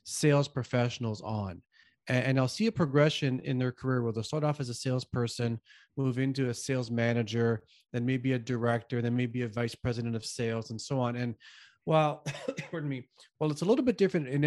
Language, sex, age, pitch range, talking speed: English, male, 30-49, 125-165 Hz, 200 wpm